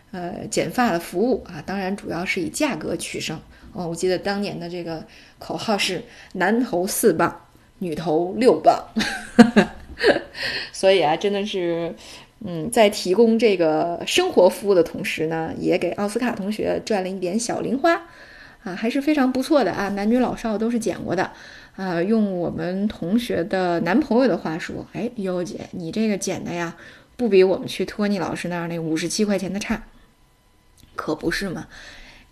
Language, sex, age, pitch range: Chinese, female, 20-39, 170-220 Hz